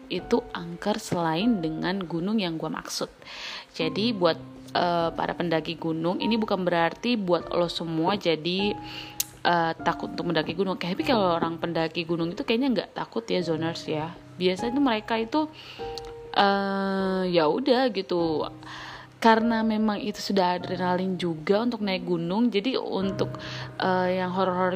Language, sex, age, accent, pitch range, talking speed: Indonesian, female, 20-39, native, 170-215 Hz, 150 wpm